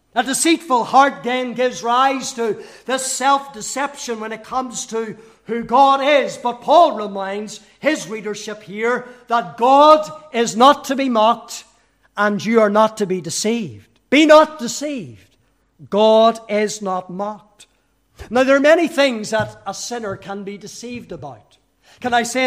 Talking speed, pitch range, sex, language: 155 wpm, 210-255 Hz, male, English